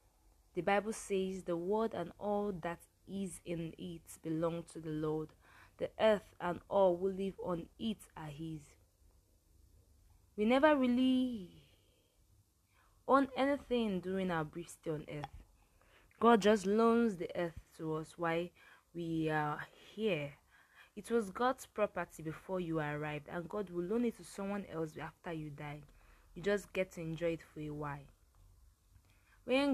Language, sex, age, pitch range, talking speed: English, female, 20-39, 155-200 Hz, 150 wpm